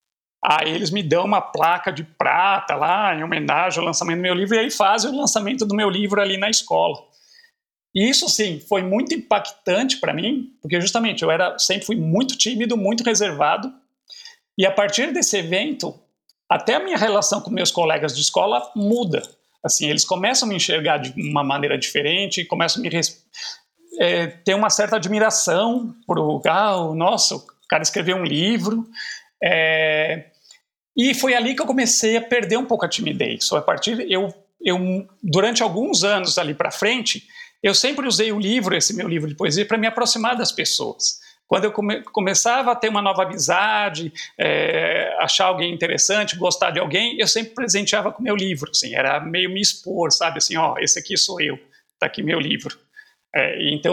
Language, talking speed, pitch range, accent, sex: Portuguese, 185 wpm, 180-235 Hz, Brazilian, male